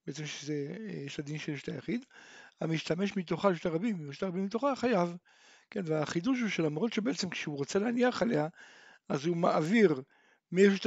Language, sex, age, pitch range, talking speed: Hebrew, male, 60-79, 160-210 Hz, 145 wpm